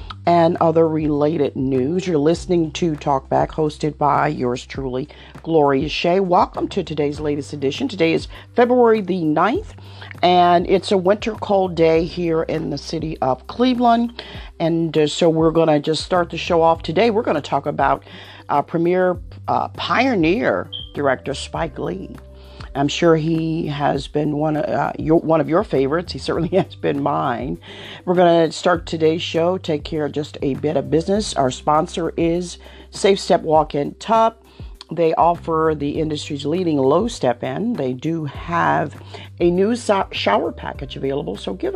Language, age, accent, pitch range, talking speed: English, 50-69, American, 140-175 Hz, 170 wpm